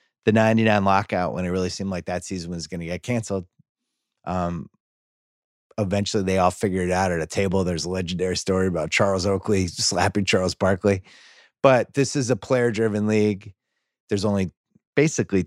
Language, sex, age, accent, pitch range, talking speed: English, male, 30-49, American, 90-110 Hz, 175 wpm